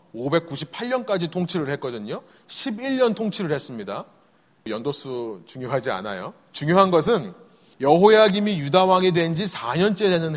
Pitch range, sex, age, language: 155-210 Hz, male, 30-49, Korean